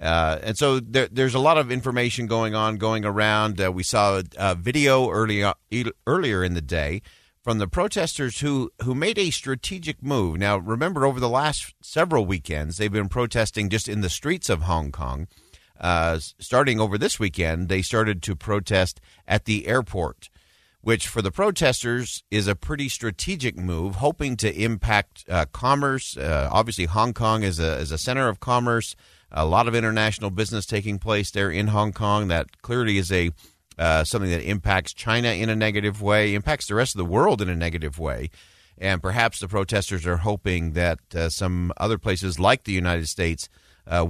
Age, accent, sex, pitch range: 50-69, American, male, 90-120 Hz